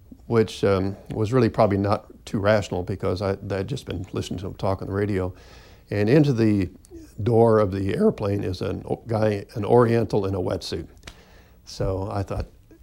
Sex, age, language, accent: male, 50-69, English, American